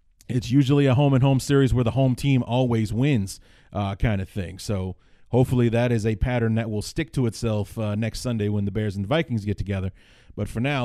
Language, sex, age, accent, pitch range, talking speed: English, male, 30-49, American, 110-140 Hz, 225 wpm